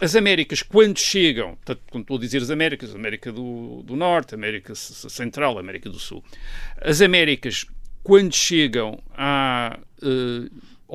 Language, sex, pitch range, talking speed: Portuguese, male, 110-150 Hz, 140 wpm